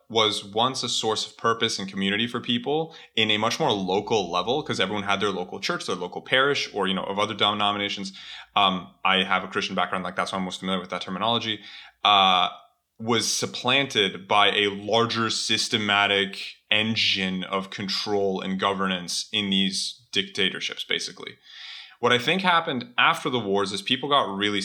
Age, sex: 20-39, male